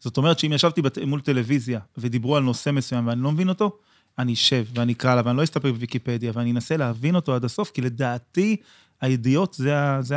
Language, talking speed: Hebrew, 195 wpm